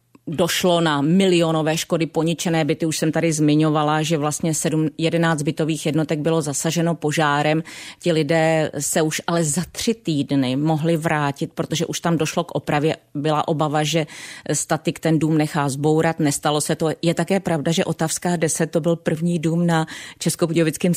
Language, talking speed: Czech, 165 wpm